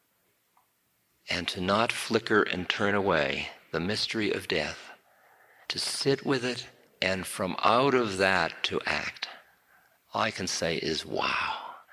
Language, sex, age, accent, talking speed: English, male, 50-69, American, 140 wpm